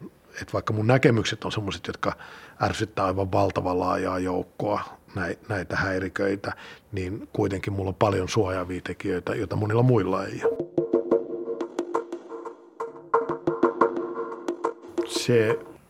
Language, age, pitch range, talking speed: Finnish, 50-69, 95-110 Hz, 100 wpm